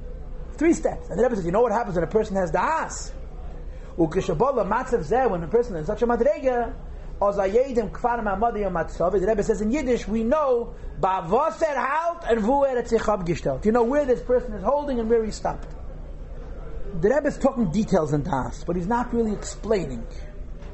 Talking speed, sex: 155 wpm, male